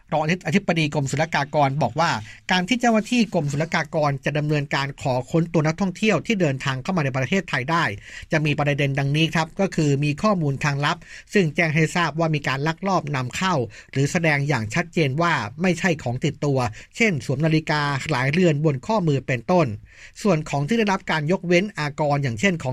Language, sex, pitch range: Thai, male, 140-175 Hz